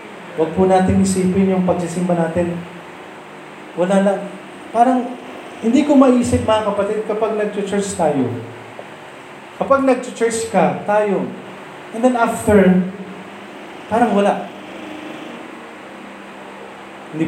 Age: 20-39